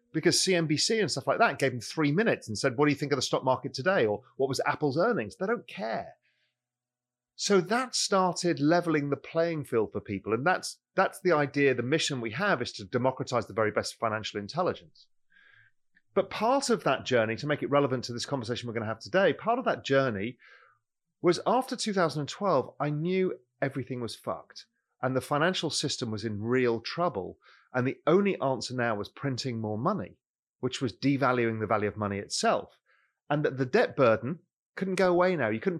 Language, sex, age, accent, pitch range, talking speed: English, male, 40-59, British, 120-170 Hz, 200 wpm